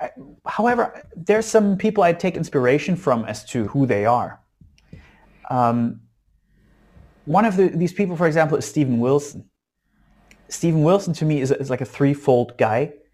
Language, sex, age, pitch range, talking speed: English, male, 30-49, 120-150 Hz, 160 wpm